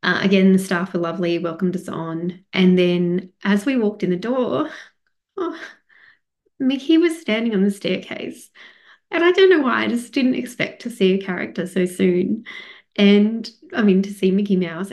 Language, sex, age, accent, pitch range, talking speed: English, female, 20-39, Australian, 185-230 Hz, 185 wpm